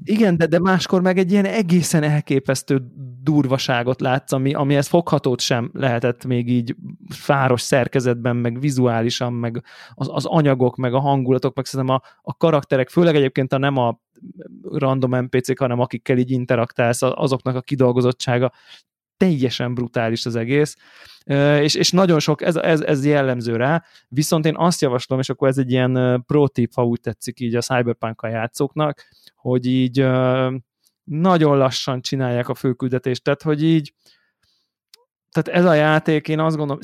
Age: 20-39